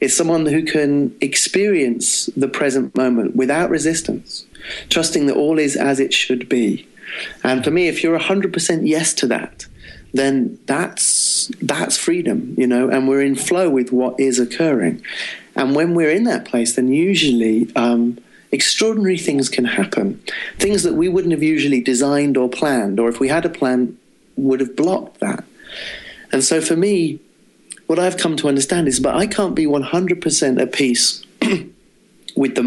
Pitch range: 125-160 Hz